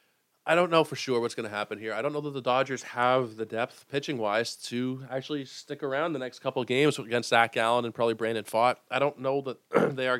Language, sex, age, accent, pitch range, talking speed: English, male, 20-39, American, 105-130 Hz, 245 wpm